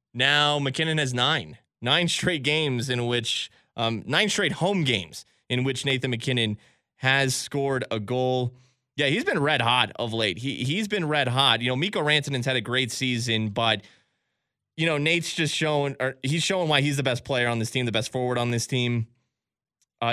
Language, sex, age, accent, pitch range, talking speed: English, male, 20-39, American, 115-140 Hz, 205 wpm